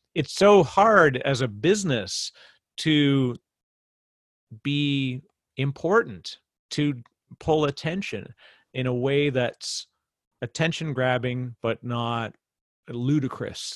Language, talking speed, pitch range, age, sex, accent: English, 90 wpm, 120-150 Hz, 40-59, male, American